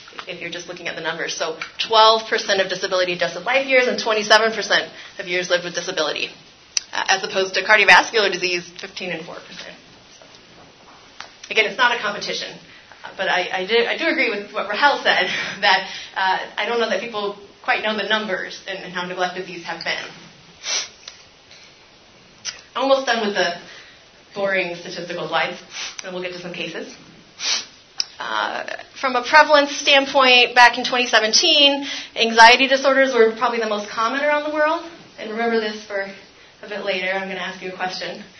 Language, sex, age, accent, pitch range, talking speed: English, female, 30-49, American, 180-235 Hz, 170 wpm